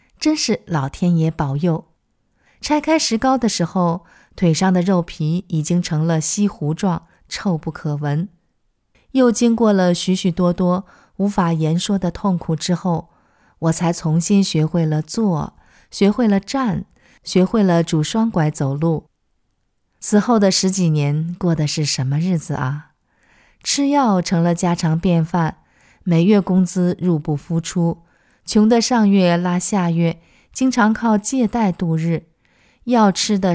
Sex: female